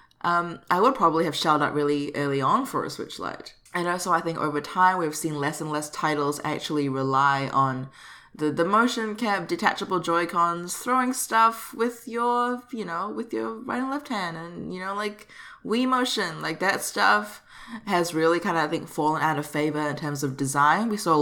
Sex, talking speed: female, 205 wpm